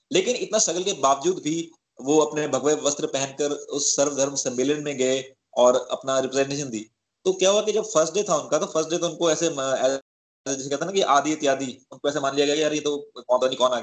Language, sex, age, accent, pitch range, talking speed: Hindi, male, 20-39, native, 125-165 Hz, 135 wpm